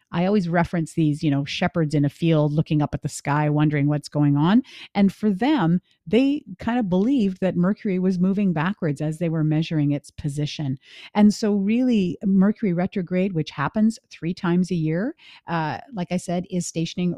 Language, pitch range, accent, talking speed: English, 160-210 Hz, American, 190 wpm